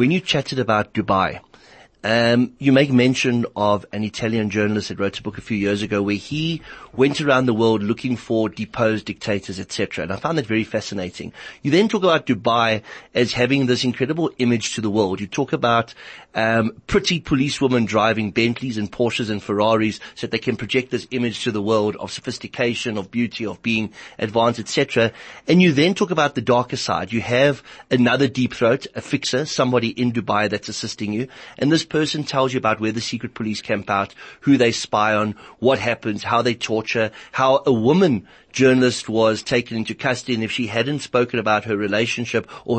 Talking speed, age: 200 wpm, 30-49